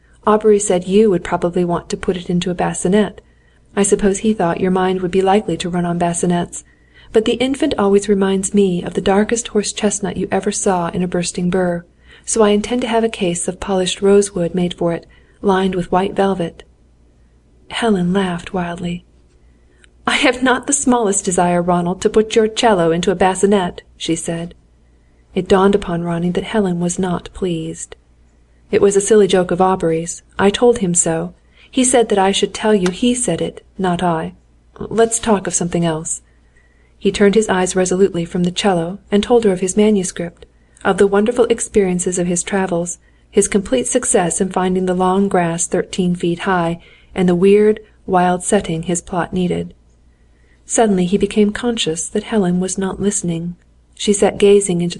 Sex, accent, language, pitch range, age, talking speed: female, American, Greek, 170-205 Hz, 40-59, 185 wpm